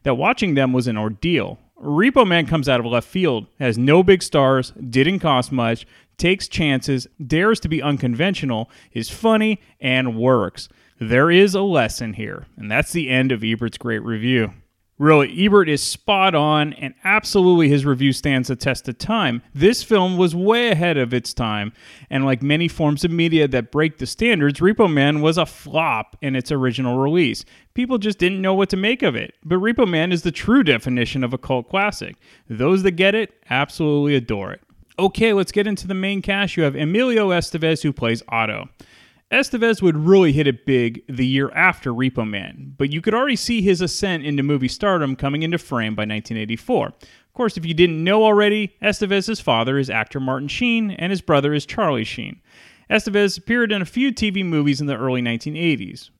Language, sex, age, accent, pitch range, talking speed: English, male, 30-49, American, 130-195 Hz, 195 wpm